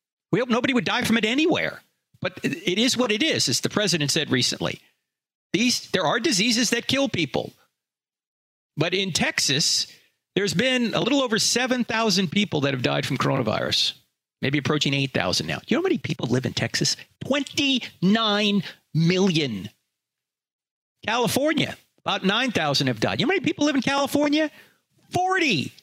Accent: American